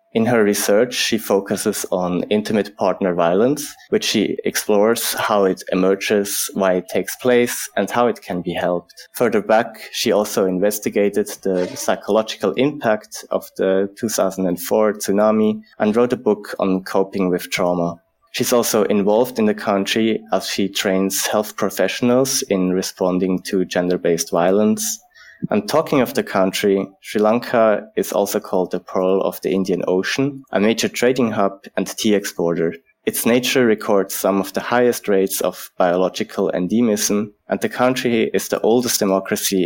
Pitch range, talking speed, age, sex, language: 95-110 Hz, 155 wpm, 20-39, male, English